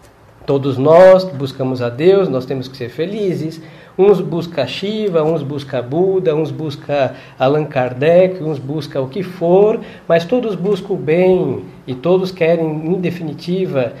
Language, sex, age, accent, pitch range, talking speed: Portuguese, male, 50-69, Brazilian, 140-175 Hz, 150 wpm